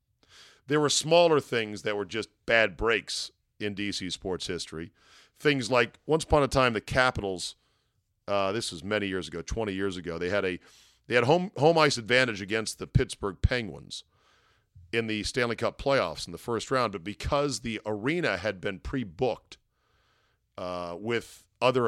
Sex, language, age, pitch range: male, English, 40-59, 100-130 Hz